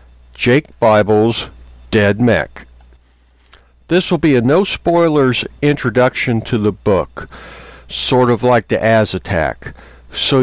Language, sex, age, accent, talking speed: English, male, 60-79, American, 120 wpm